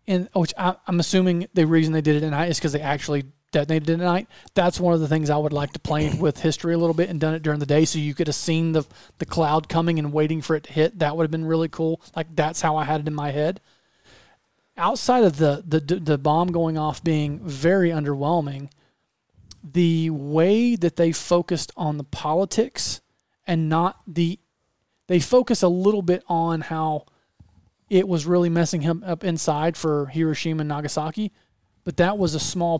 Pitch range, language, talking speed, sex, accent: 155-200 Hz, English, 215 wpm, male, American